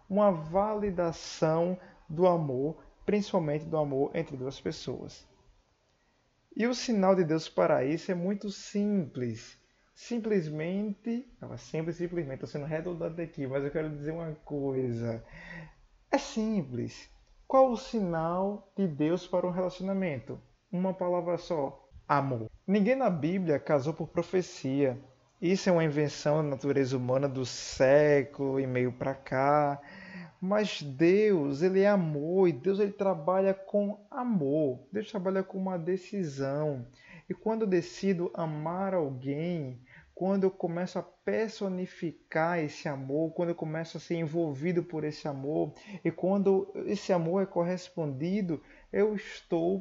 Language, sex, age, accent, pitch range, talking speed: Portuguese, male, 20-39, Brazilian, 145-190 Hz, 135 wpm